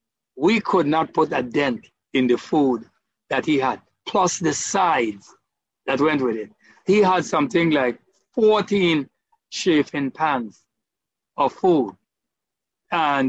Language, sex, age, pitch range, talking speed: English, male, 60-79, 135-180 Hz, 130 wpm